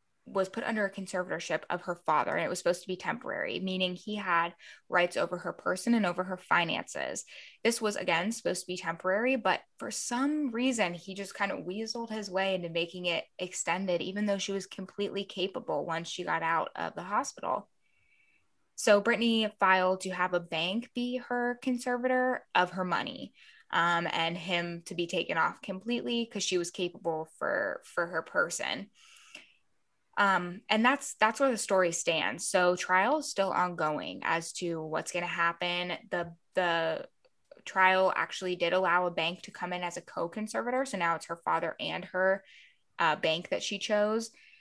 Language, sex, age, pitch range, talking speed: English, female, 10-29, 175-215 Hz, 180 wpm